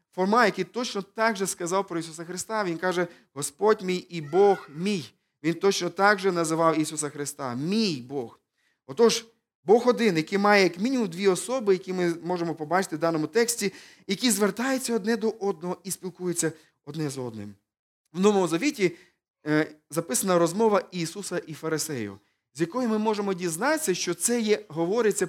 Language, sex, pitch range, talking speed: Ukrainian, male, 160-210 Hz, 160 wpm